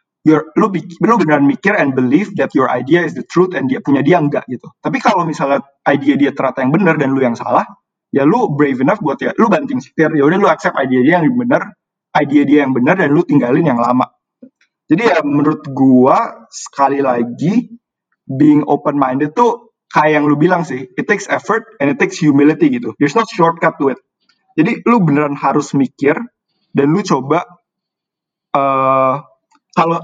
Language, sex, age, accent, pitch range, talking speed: English, male, 20-39, Indonesian, 135-175 Hz, 190 wpm